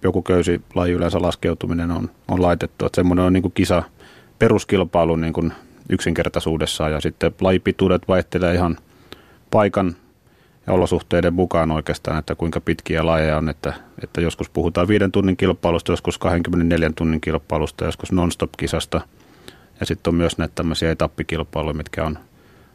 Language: Finnish